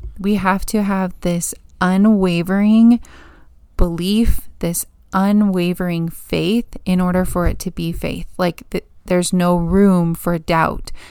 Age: 20-39